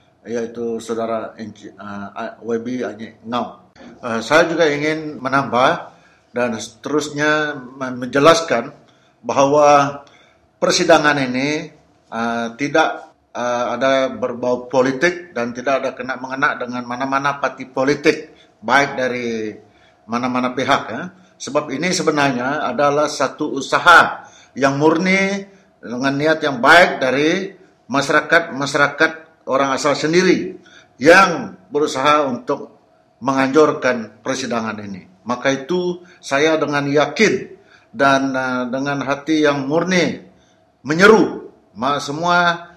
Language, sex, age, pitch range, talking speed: English, male, 50-69, 130-155 Hz, 100 wpm